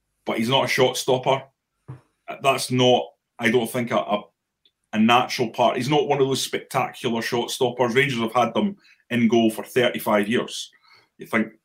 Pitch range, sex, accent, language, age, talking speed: 110-130 Hz, male, British, English, 30-49, 175 wpm